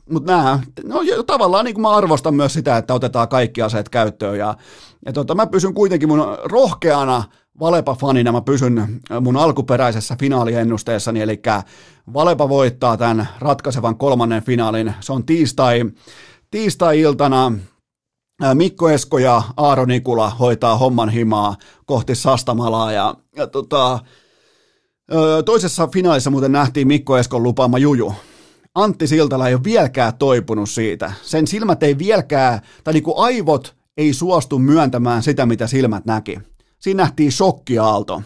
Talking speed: 130 wpm